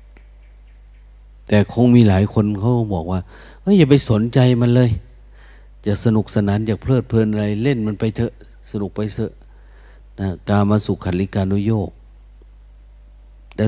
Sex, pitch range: male, 80-110 Hz